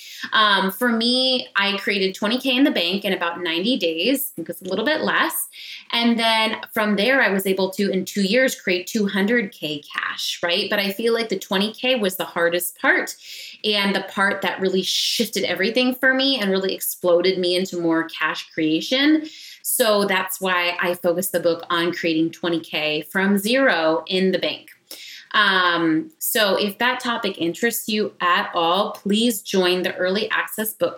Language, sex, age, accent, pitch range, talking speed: English, female, 20-39, American, 175-230 Hz, 180 wpm